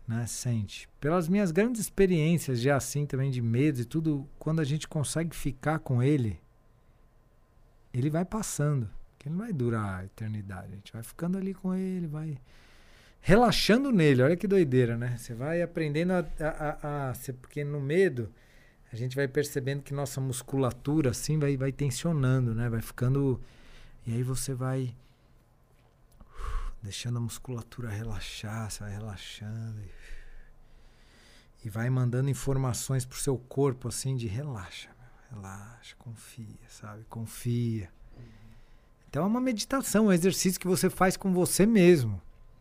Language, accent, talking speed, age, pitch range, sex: Portuguese, Brazilian, 150 wpm, 40-59, 115-165 Hz, male